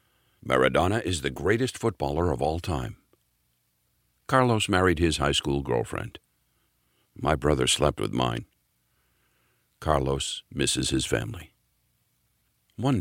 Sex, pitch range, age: male, 65-90 Hz, 60-79